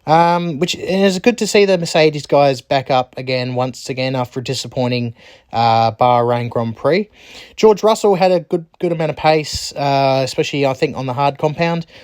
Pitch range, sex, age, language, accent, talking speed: 125-160 Hz, male, 20-39, English, Australian, 190 wpm